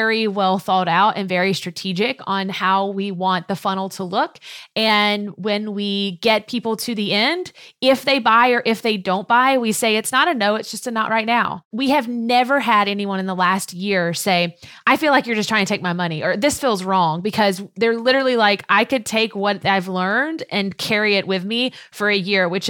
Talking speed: 225 wpm